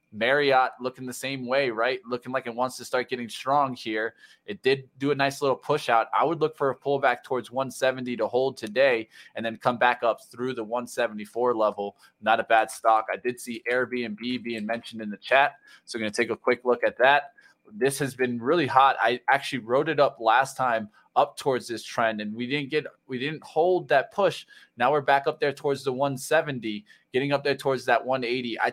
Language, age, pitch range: English, 20-39, 115-135 Hz